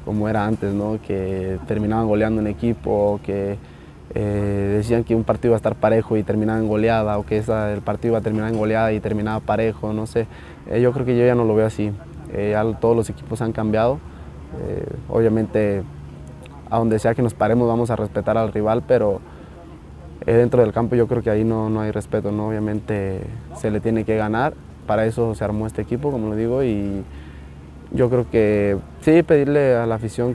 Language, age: Spanish, 20-39